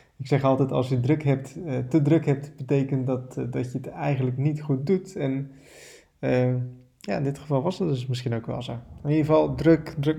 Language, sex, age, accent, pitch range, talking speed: Dutch, male, 20-39, Dutch, 130-150 Hz, 220 wpm